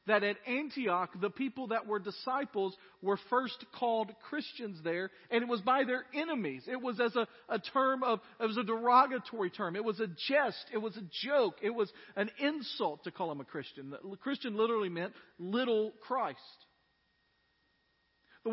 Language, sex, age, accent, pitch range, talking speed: English, male, 40-59, American, 175-250 Hz, 180 wpm